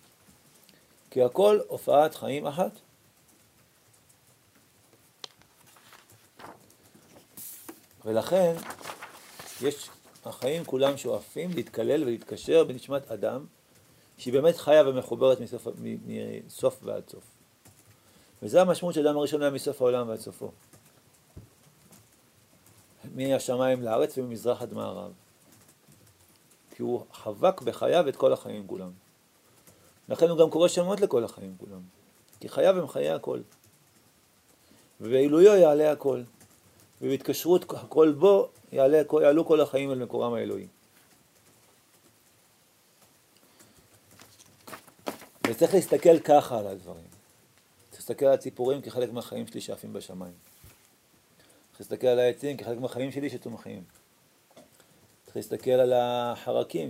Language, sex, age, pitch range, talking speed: Hebrew, male, 50-69, 115-150 Hz, 100 wpm